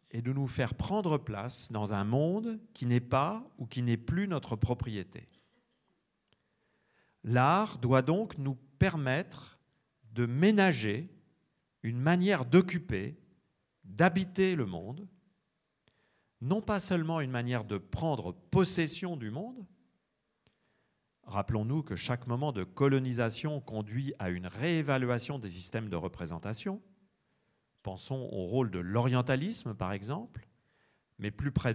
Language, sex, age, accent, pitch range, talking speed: French, male, 50-69, French, 110-160 Hz, 125 wpm